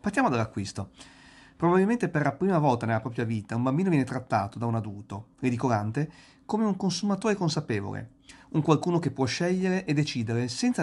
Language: Italian